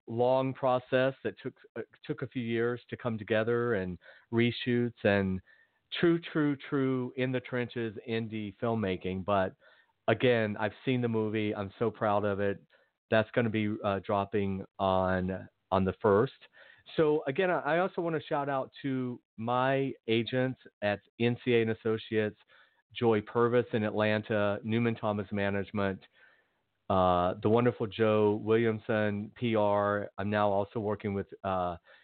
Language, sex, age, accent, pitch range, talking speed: English, male, 40-59, American, 105-125 Hz, 145 wpm